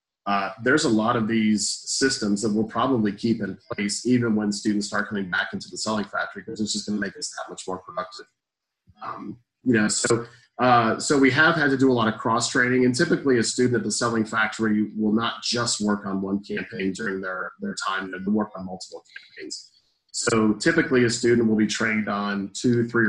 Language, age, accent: English, 30-49, American